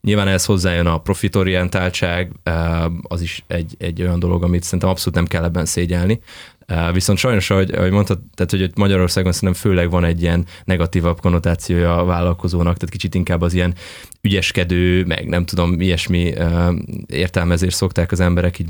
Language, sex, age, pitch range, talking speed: Hungarian, male, 20-39, 85-105 Hz, 160 wpm